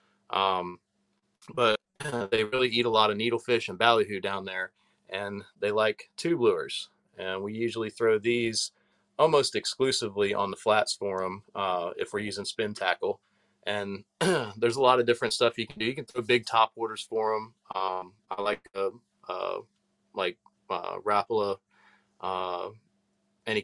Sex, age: male, 30-49